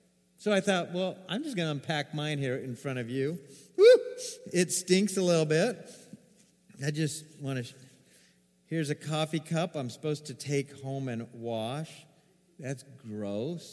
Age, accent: 50-69, American